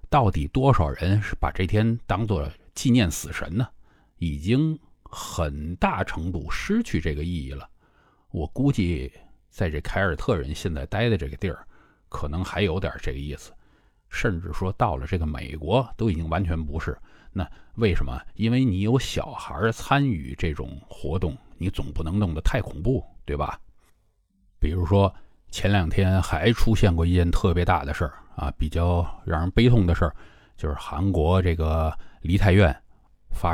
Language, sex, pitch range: Chinese, male, 80-100 Hz